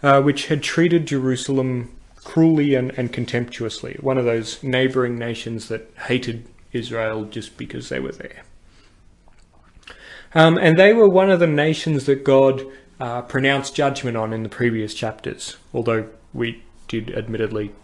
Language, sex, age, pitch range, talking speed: English, male, 30-49, 115-155 Hz, 150 wpm